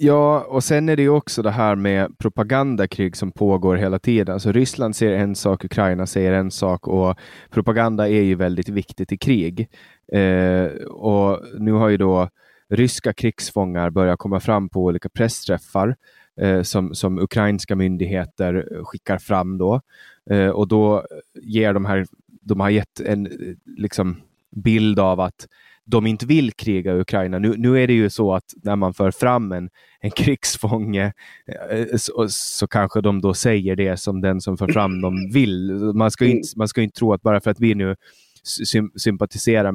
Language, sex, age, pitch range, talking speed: Swedish, male, 20-39, 95-110 Hz, 175 wpm